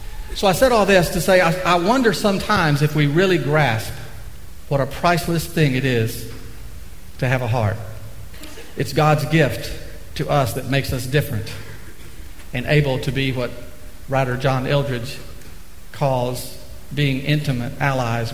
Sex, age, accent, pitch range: male, 50-69, American, 100-145 Hz